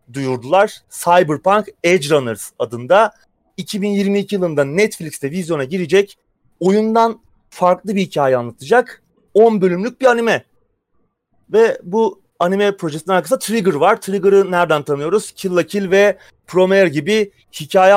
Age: 30-49